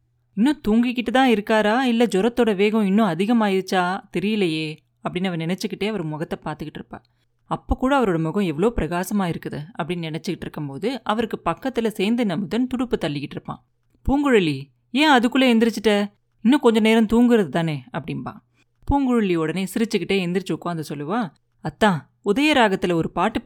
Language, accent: Tamil, native